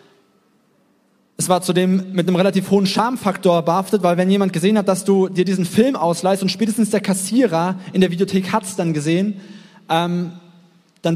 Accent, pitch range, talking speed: German, 165-205 Hz, 175 wpm